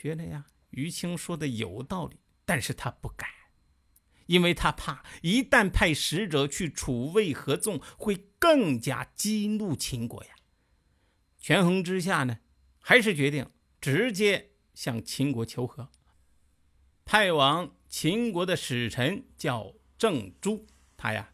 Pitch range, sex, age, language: 110-175 Hz, male, 50-69, Chinese